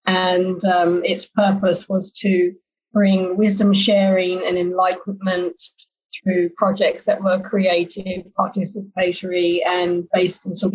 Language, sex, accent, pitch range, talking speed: English, female, British, 180-210 Hz, 115 wpm